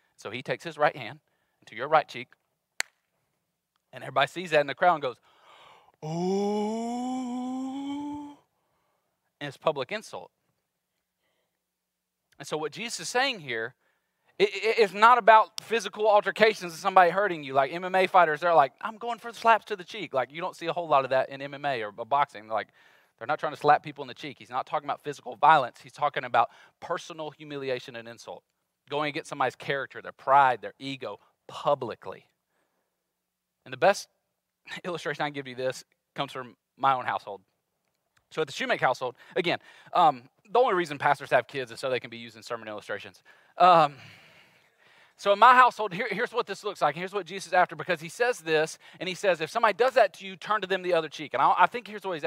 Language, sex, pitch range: English, male, 140-210 Hz